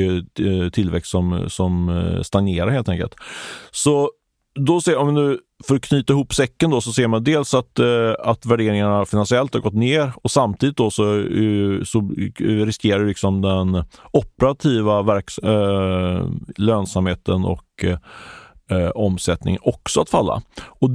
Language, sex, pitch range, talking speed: Swedish, male, 100-125 Hz, 130 wpm